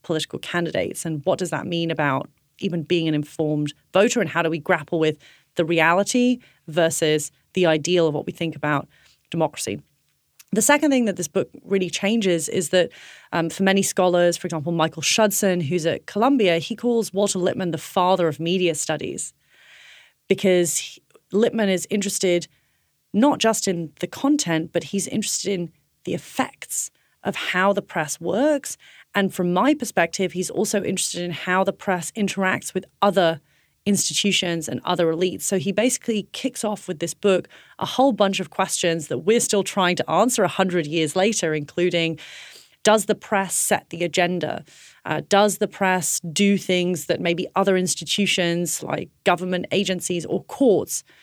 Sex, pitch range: female, 165-200 Hz